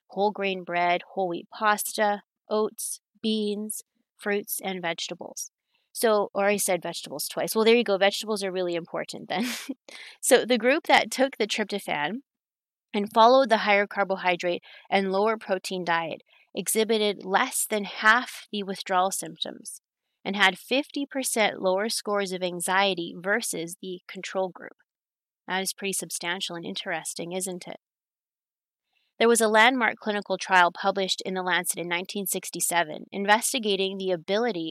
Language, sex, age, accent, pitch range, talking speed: English, female, 30-49, American, 180-220 Hz, 140 wpm